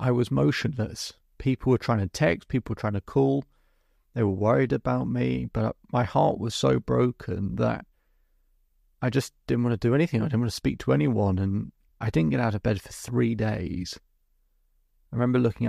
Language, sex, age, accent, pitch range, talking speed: English, male, 30-49, British, 75-120 Hz, 200 wpm